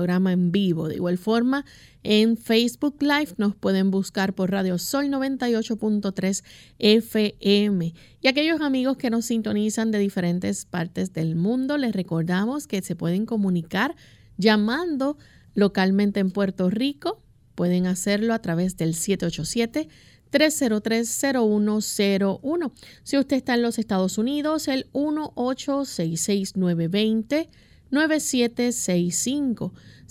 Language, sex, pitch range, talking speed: English, female, 185-250 Hz, 110 wpm